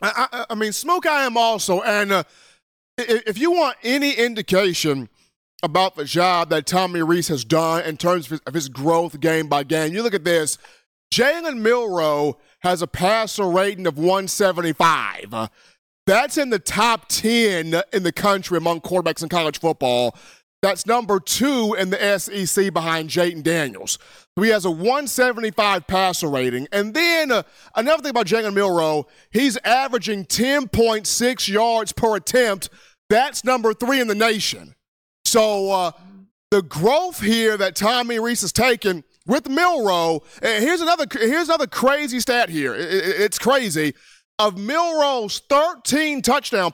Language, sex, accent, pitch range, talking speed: English, male, American, 170-245 Hz, 150 wpm